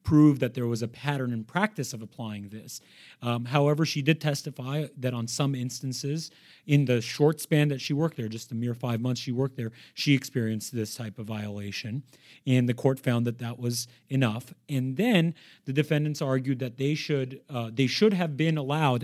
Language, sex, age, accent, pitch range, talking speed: English, male, 30-49, American, 120-150 Hz, 200 wpm